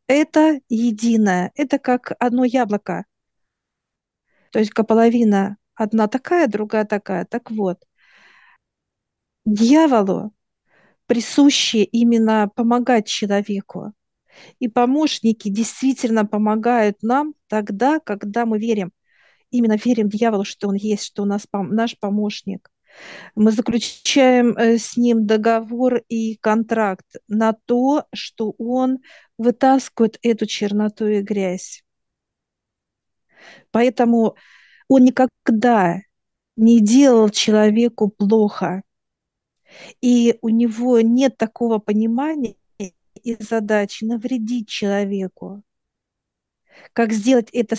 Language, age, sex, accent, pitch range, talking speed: Russian, 50-69, female, native, 210-245 Hz, 95 wpm